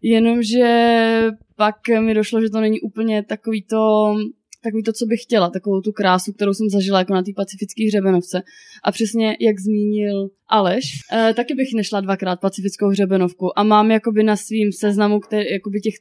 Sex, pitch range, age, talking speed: female, 195-225 Hz, 20-39, 170 wpm